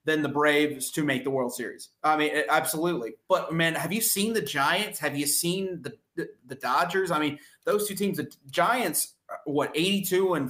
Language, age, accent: English, 30-49, American